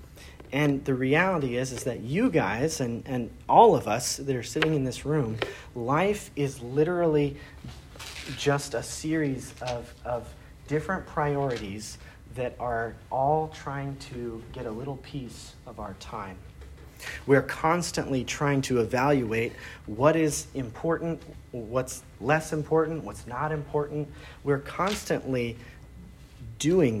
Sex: male